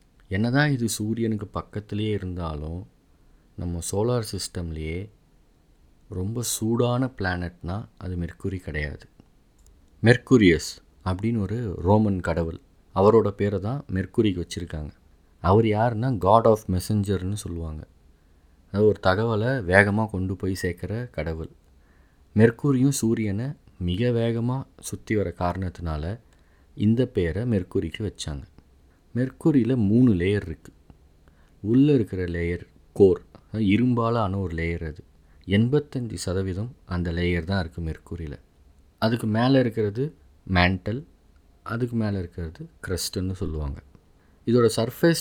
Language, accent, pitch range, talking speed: Tamil, native, 85-115 Hz, 105 wpm